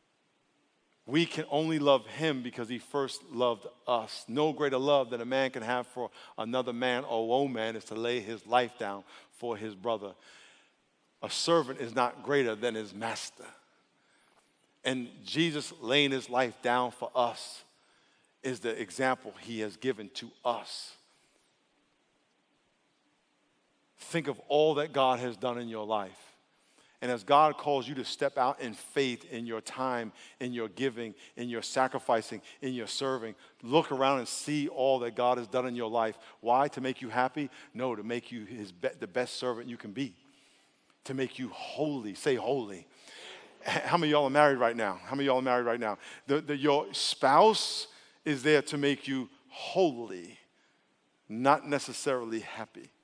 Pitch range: 115-140 Hz